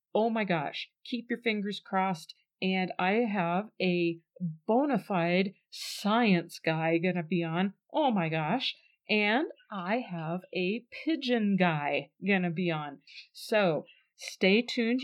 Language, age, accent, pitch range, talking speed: English, 40-59, American, 180-235 Hz, 140 wpm